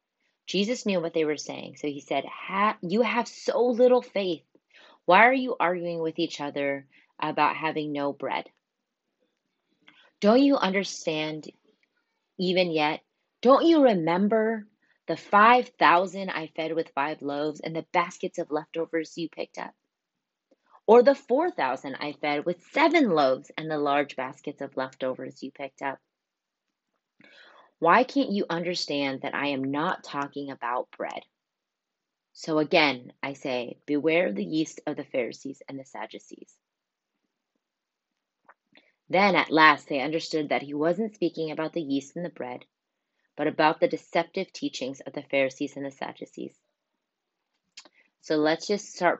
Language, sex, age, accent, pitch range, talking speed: English, female, 30-49, American, 145-180 Hz, 145 wpm